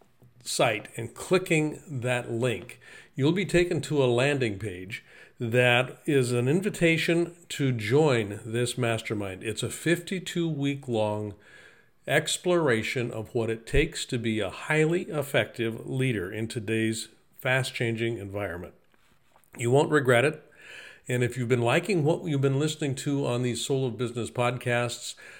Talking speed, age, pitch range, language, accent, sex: 145 wpm, 50-69, 115-145 Hz, English, American, male